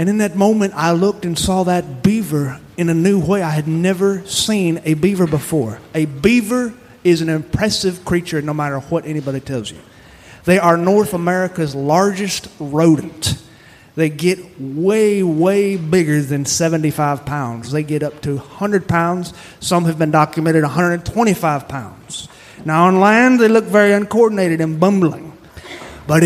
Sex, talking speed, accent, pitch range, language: male, 160 wpm, American, 155-205 Hz, English